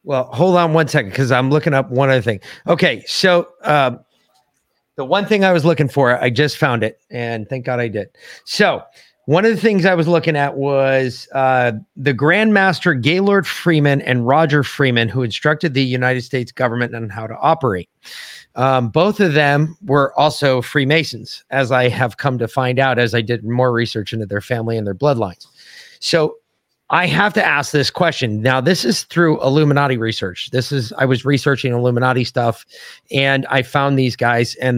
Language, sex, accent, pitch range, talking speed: English, male, American, 125-155 Hz, 195 wpm